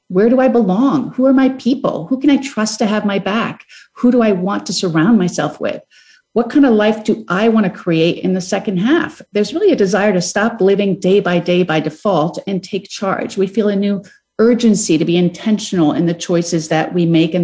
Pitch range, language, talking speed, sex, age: 180-235 Hz, English, 230 wpm, female, 40-59